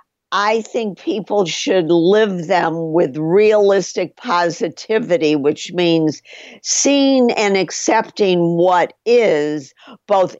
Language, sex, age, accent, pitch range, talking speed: English, female, 50-69, American, 165-210 Hz, 100 wpm